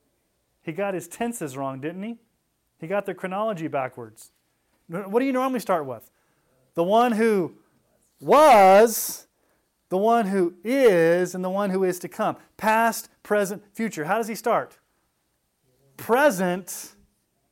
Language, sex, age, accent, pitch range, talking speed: English, male, 30-49, American, 140-215 Hz, 140 wpm